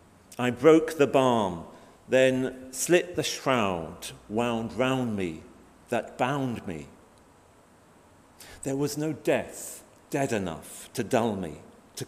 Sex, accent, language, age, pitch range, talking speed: male, British, English, 50-69, 95-130 Hz, 120 wpm